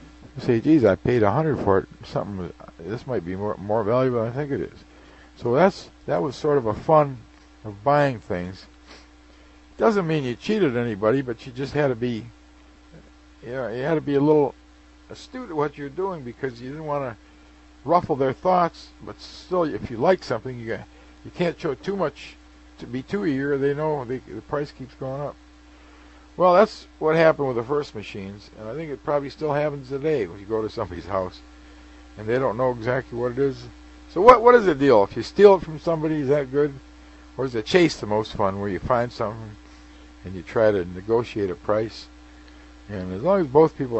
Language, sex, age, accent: English, male, 60-79, American